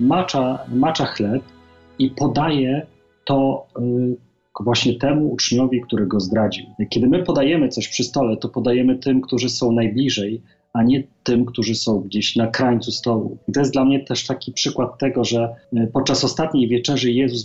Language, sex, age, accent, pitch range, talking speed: Polish, male, 30-49, native, 110-125 Hz, 160 wpm